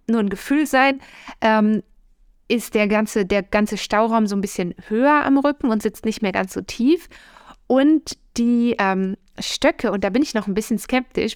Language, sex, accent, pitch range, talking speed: German, female, German, 195-235 Hz, 185 wpm